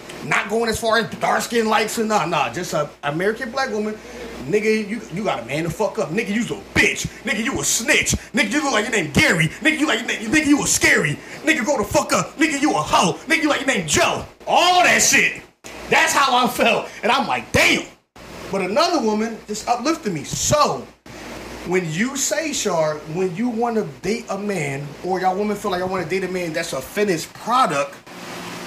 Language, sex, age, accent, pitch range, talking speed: English, male, 30-49, American, 195-270 Hz, 225 wpm